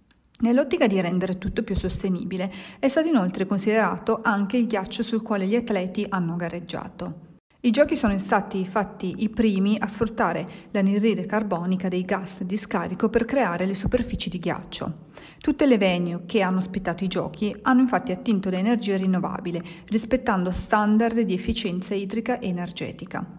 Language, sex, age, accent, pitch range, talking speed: Italian, female, 40-59, native, 185-220 Hz, 160 wpm